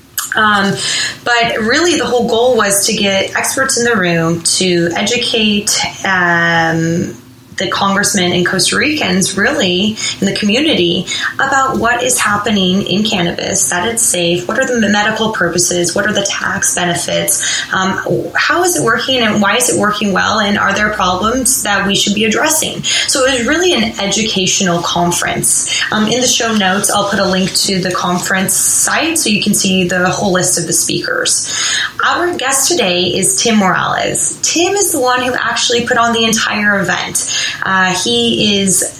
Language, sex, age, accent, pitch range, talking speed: English, female, 20-39, American, 185-230 Hz, 175 wpm